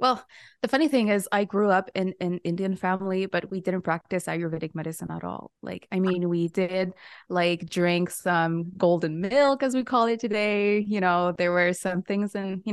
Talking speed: 205 wpm